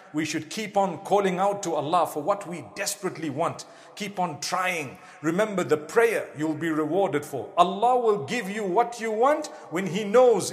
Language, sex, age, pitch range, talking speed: English, male, 50-69, 155-205 Hz, 190 wpm